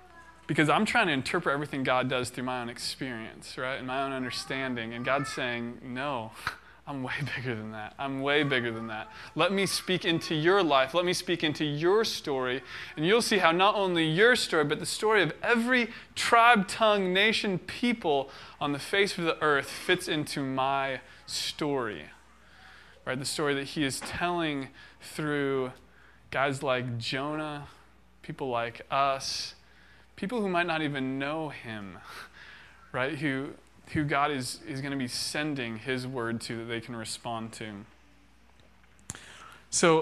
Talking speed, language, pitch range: 165 wpm, English, 125-165 Hz